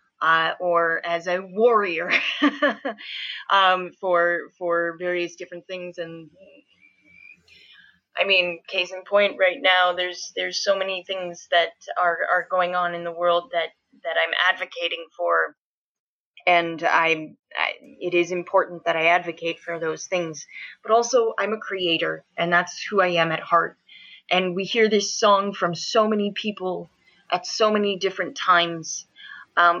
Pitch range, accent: 175-205 Hz, American